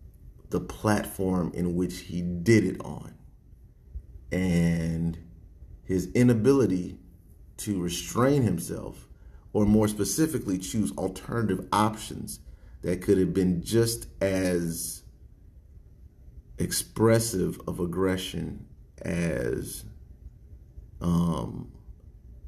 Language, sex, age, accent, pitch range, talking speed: English, male, 40-59, American, 85-110 Hz, 85 wpm